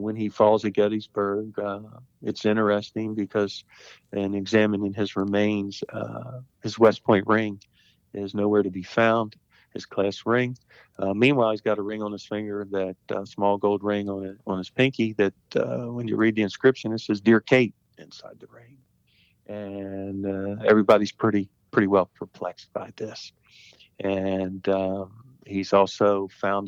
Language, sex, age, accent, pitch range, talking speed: English, male, 50-69, American, 95-110 Hz, 160 wpm